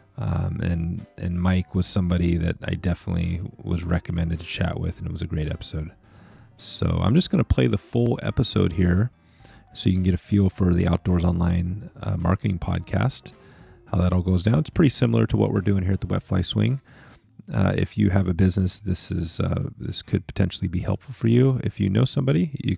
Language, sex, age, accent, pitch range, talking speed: English, male, 30-49, American, 85-105 Hz, 215 wpm